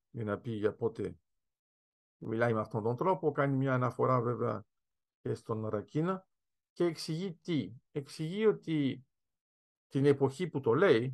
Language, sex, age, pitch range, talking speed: Greek, male, 50-69, 115-150 Hz, 145 wpm